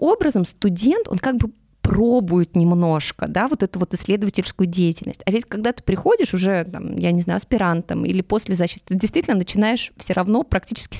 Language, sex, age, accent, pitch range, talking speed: Russian, female, 20-39, native, 180-230 Hz, 180 wpm